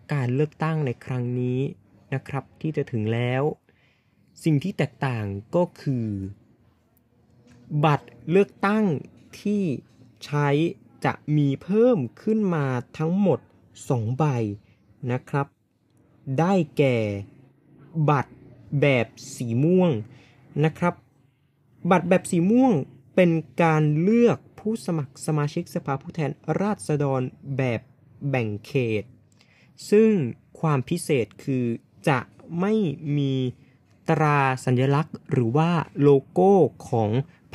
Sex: male